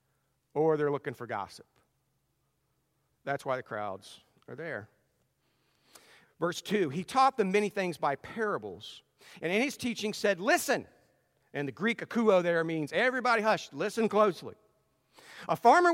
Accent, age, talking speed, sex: American, 50-69, 145 wpm, male